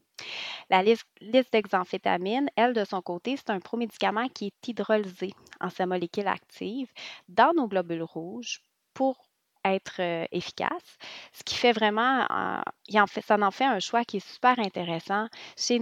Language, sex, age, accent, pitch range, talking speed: French, female, 30-49, Canadian, 195-240 Hz, 150 wpm